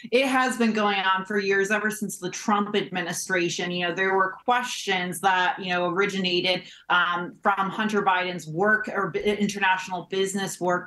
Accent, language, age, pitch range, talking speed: American, English, 30-49, 175-205 Hz, 165 wpm